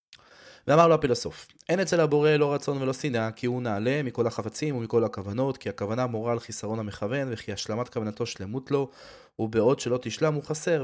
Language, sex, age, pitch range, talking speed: Hebrew, male, 20-39, 125-160 Hz, 185 wpm